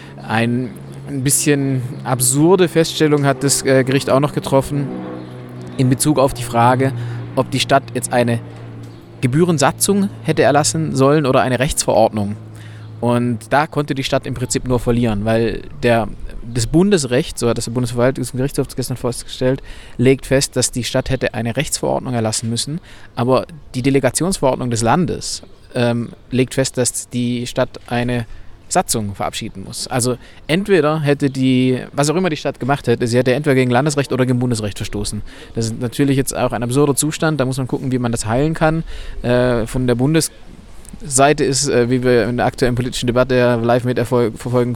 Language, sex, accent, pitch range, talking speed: German, male, German, 115-135 Hz, 165 wpm